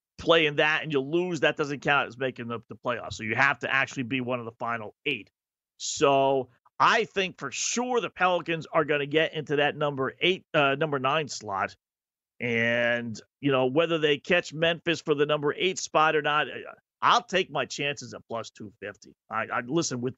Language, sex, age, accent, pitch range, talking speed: English, male, 40-59, American, 140-175 Hz, 210 wpm